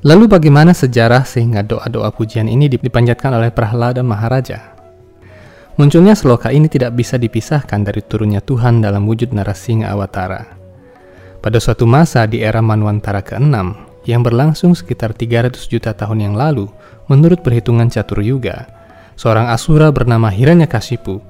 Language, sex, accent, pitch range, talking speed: Indonesian, male, native, 110-135 Hz, 135 wpm